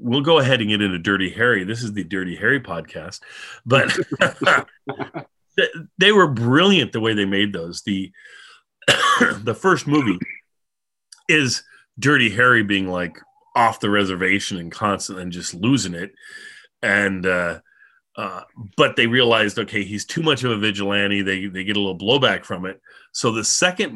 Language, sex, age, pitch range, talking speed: English, male, 30-49, 100-135 Hz, 165 wpm